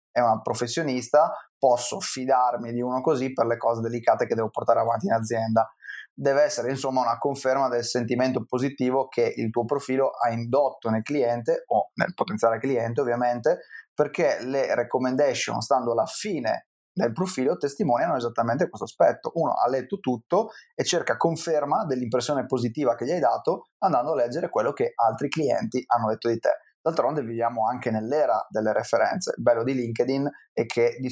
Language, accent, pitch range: Italian, native, 115-135 Hz